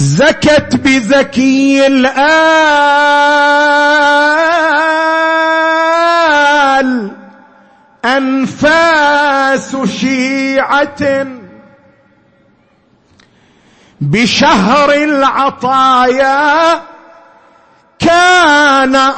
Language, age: Arabic, 50-69